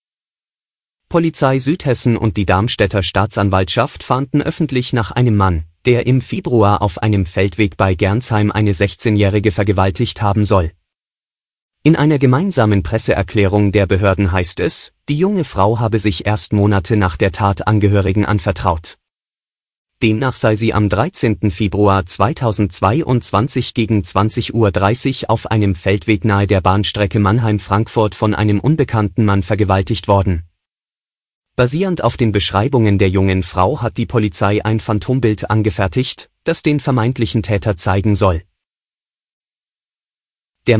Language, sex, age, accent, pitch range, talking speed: German, male, 30-49, German, 100-120 Hz, 130 wpm